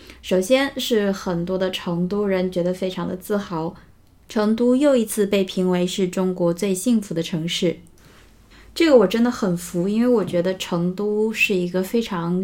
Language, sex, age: Chinese, female, 20-39